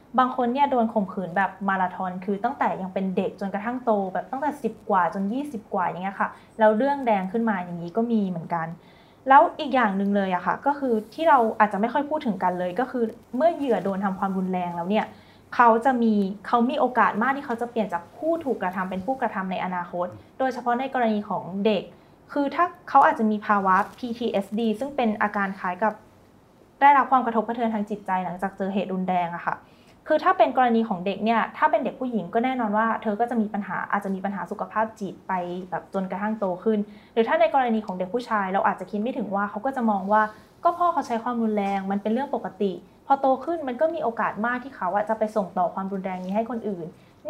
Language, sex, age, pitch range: Thai, female, 10-29, 190-240 Hz